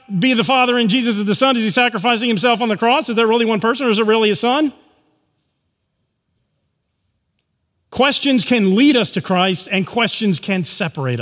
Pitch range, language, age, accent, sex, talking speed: 160-220 Hz, English, 40-59, American, male, 195 wpm